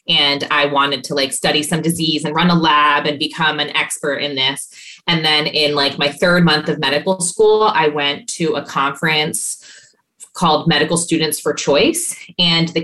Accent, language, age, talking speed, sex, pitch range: American, English, 20-39, 185 wpm, female, 145-170 Hz